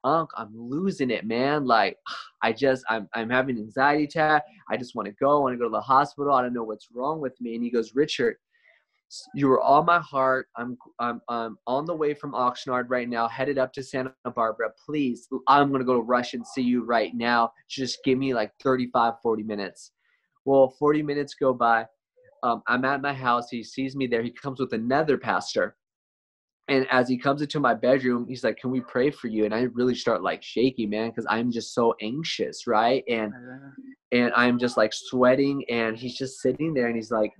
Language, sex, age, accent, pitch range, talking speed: Spanish, male, 20-39, American, 115-135 Hz, 215 wpm